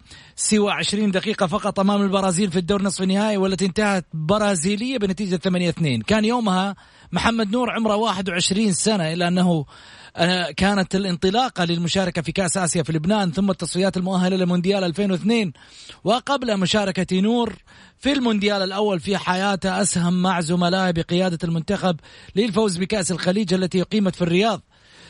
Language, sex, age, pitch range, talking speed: Arabic, male, 30-49, 180-210 Hz, 135 wpm